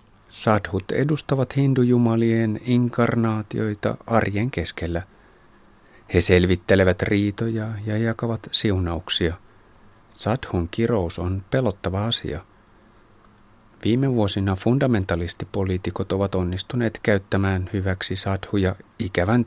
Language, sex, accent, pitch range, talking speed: Finnish, male, native, 90-110 Hz, 80 wpm